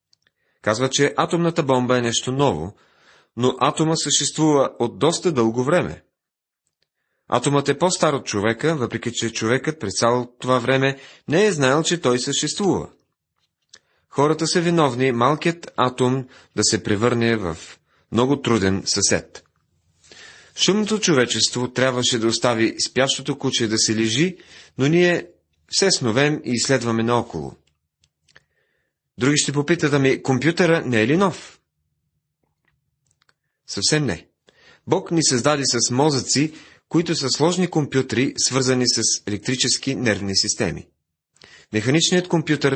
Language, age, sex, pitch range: Bulgarian, 40-59, male, 115-150 Hz